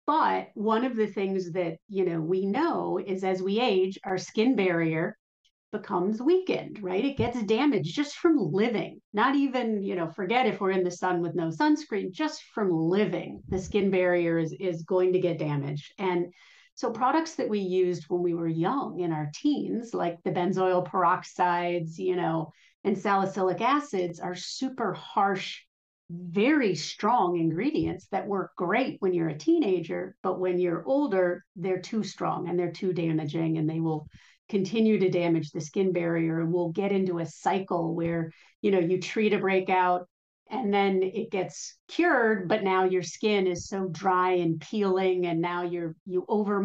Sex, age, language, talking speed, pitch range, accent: female, 40-59, English, 180 wpm, 175-200 Hz, American